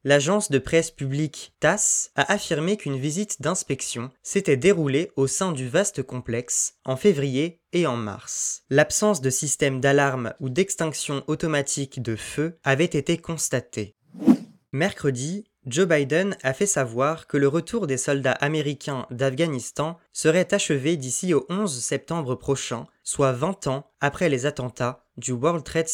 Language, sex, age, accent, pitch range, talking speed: French, male, 20-39, French, 130-165 Hz, 145 wpm